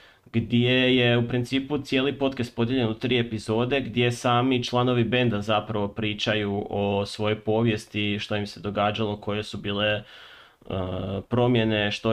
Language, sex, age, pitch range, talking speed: Croatian, male, 20-39, 105-125 Hz, 145 wpm